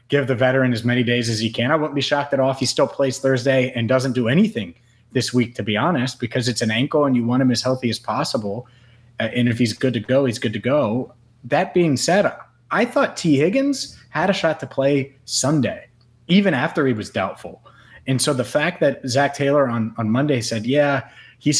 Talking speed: 230 wpm